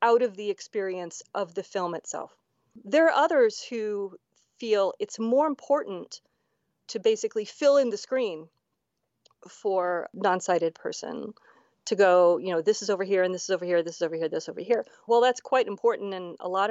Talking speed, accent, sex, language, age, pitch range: 195 wpm, American, female, English, 30-49, 185-240 Hz